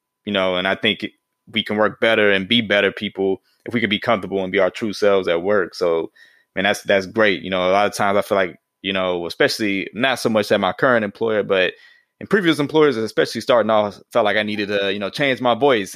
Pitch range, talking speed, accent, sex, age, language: 95-110 Hz, 250 wpm, American, male, 20-39, English